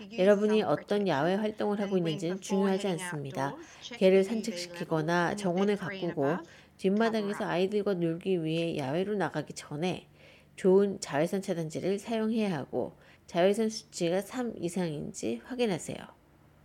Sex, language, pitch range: female, Korean, 175-220 Hz